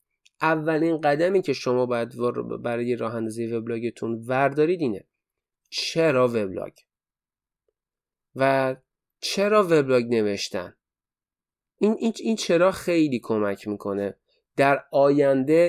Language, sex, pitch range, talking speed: Persian, male, 115-160 Hz, 95 wpm